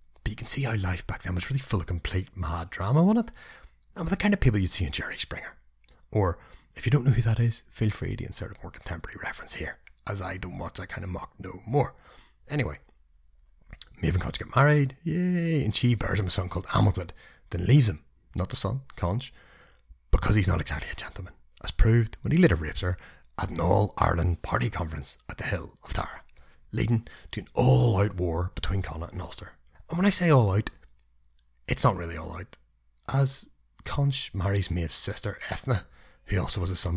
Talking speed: 210 wpm